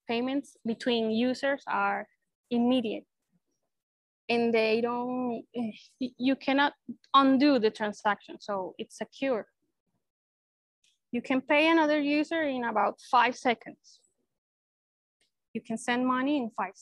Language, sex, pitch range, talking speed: English, female, 220-265 Hz, 110 wpm